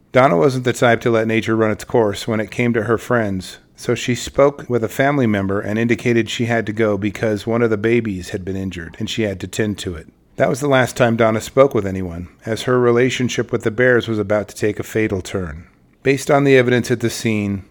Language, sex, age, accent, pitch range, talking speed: English, male, 40-59, American, 105-120 Hz, 245 wpm